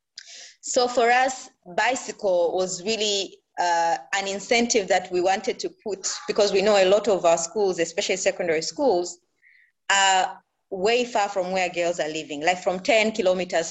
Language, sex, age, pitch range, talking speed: English, female, 20-39, 180-245 Hz, 160 wpm